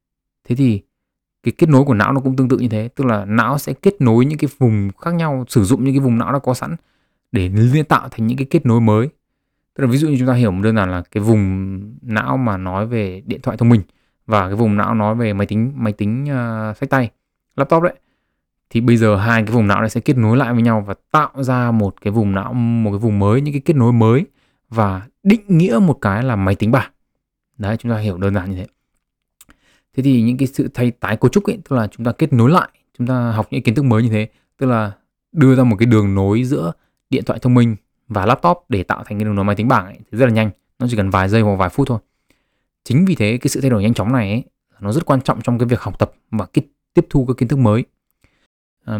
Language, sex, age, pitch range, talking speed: Vietnamese, male, 20-39, 105-135 Hz, 270 wpm